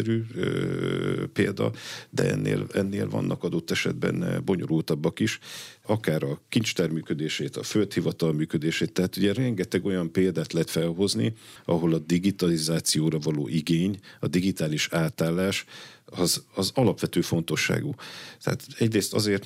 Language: Hungarian